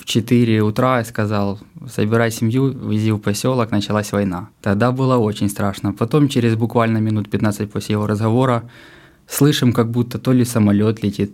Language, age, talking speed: Russian, 20-39, 165 wpm